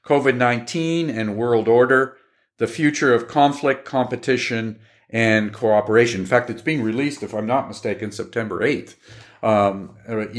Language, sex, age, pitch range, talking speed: English, male, 50-69, 115-140 Hz, 135 wpm